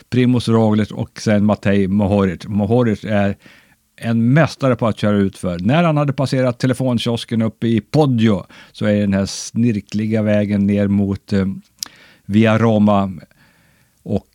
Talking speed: 150 wpm